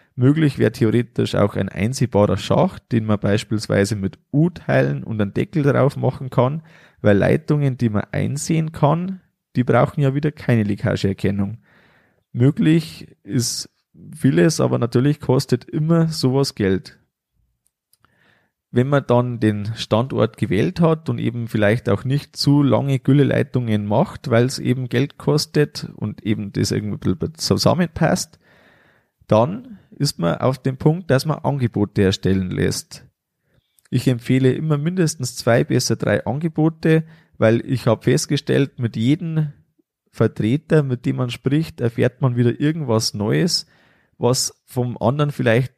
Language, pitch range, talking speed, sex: German, 110-145 Hz, 135 wpm, male